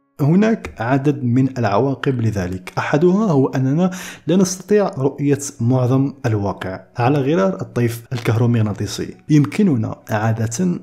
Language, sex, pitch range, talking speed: Arabic, male, 115-160 Hz, 105 wpm